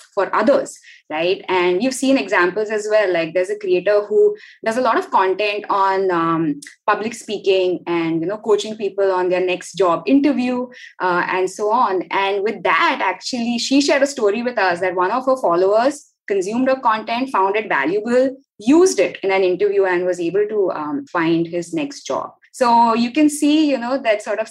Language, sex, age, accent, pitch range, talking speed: English, female, 20-39, Indian, 190-270 Hz, 200 wpm